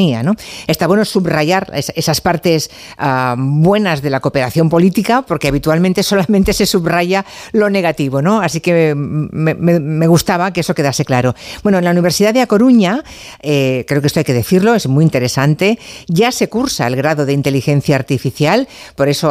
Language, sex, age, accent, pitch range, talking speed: Spanish, female, 50-69, Spanish, 135-170 Hz, 175 wpm